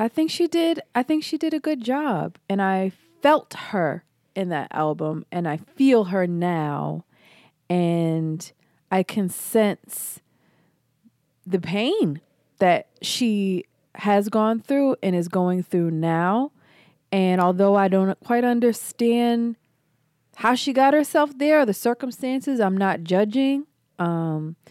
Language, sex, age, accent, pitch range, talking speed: English, female, 20-39, American, 155-205 Hz, 135 wpm